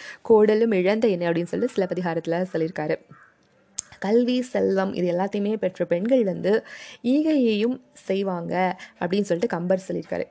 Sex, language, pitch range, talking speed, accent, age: female, Tamil, 175-230 Hz, 120 wpm, native, 20-39